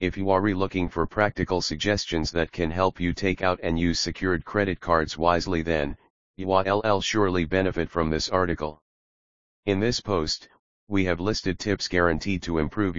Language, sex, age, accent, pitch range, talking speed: English, male, 40-59, American, 80-100 Hz, 170 wpm